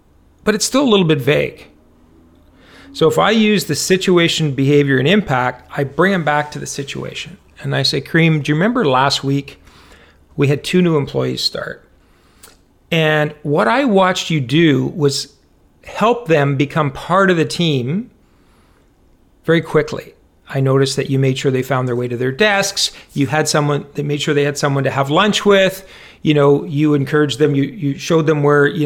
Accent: American